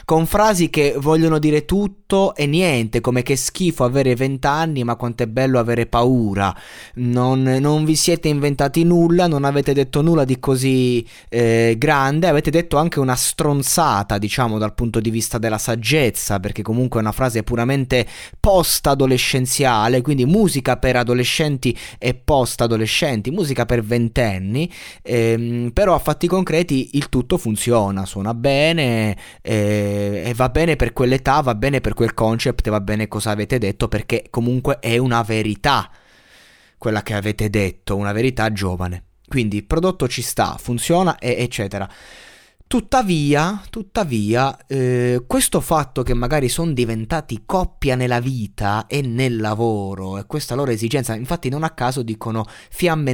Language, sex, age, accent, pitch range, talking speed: Italian, male, 20-39, native, 115-145 Hz, 150 wpm